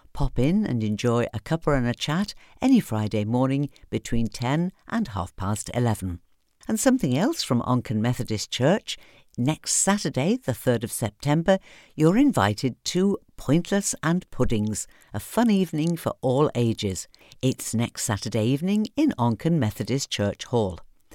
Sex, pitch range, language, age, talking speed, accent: female, 110-165 Hz, English, 50-69, 150 wpm, British